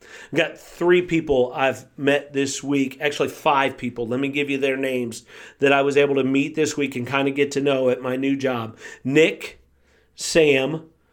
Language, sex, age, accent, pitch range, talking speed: English, male, 50-69, American, 130-155 Hz, 200 wpm